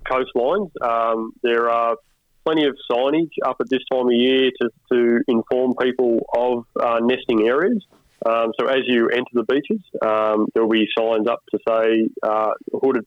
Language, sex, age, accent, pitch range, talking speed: English, male, 20-39, Australian, 105-120 Hz, 170 wpm